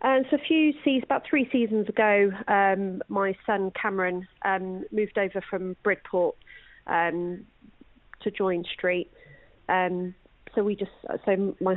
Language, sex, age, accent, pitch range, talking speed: English, female, 30-49, British, 180-210 Hz, 145 wpm